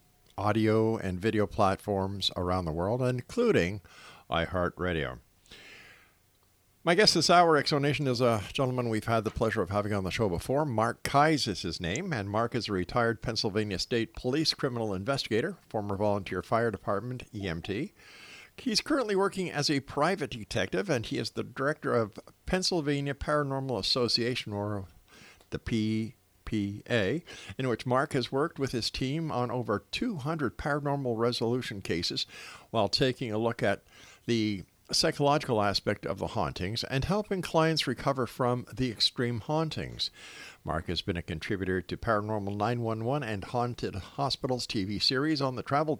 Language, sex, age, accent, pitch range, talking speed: English, male, 50-69, American, 100-135 Hz, 150 wpm